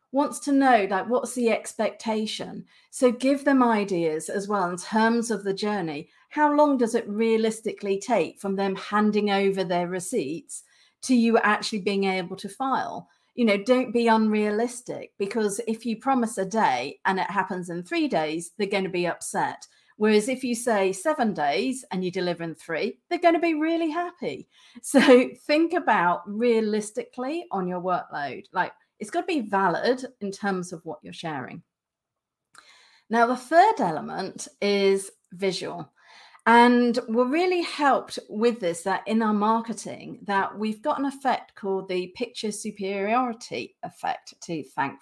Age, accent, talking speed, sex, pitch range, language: 40-59, British, 160 wpm, female, 195-250 Hz, English